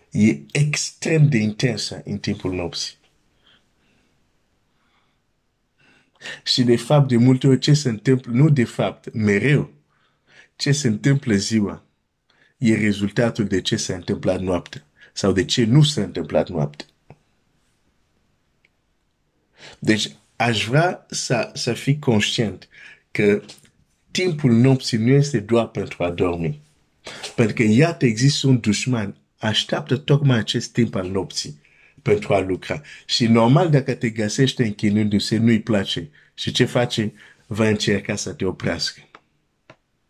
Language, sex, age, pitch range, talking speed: Romanian, male, 50-69, 105-130 Hz, 110 wpm